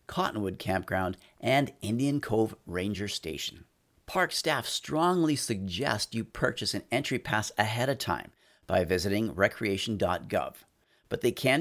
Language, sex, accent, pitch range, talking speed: English, male, American, 100-130 Hz, 130 wpm